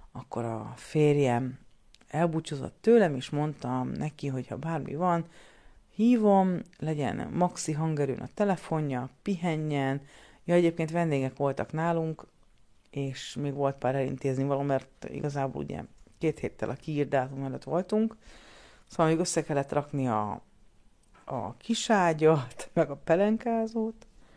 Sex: female